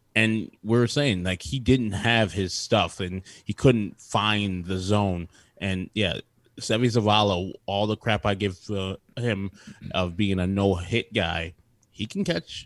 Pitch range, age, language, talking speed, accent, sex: 95-115 Hz, 20-39, English, 170 wpm, American, male